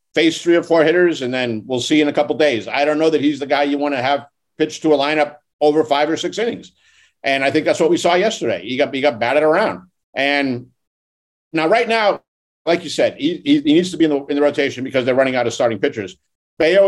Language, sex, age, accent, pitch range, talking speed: English, male, 50-69, American, 130-160 Hz, 260 wpm